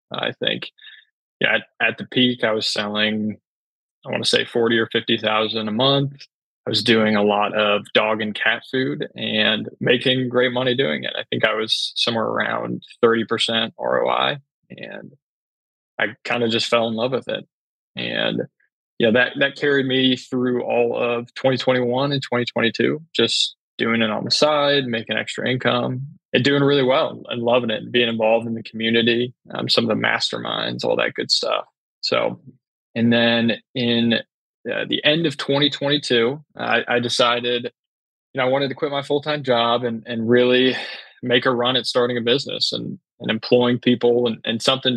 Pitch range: 115-130 Hz